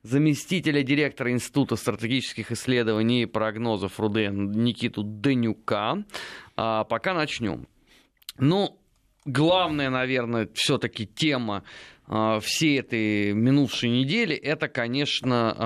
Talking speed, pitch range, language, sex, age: 90 wpm, 115-150 Hz, Russian, male, 30-49